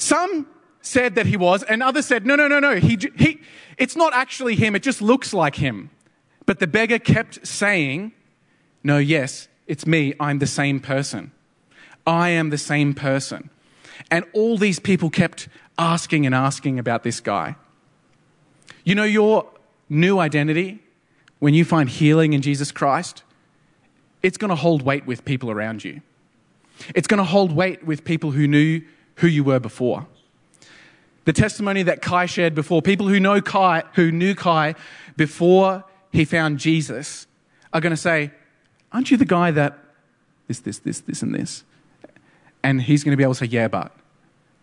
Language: English